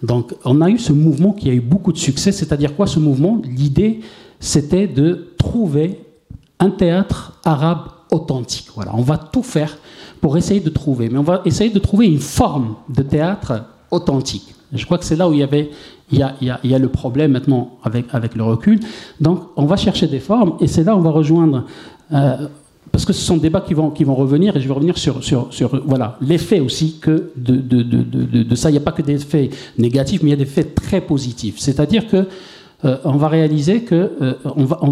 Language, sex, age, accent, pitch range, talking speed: French, male, 50-69, French, 135-180 Hz, 240 wpm